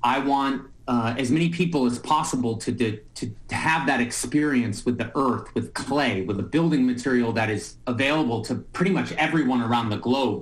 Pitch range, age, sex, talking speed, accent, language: 120-160 Hz, 30-49, male, 195 wpm, American, English